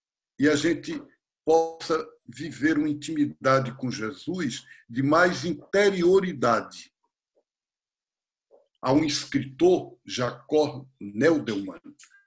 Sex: male